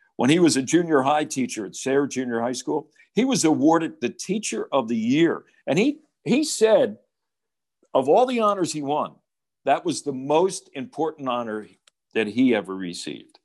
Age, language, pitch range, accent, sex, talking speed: 60-79, English, 120-170 Hz, American, male, 180 wpm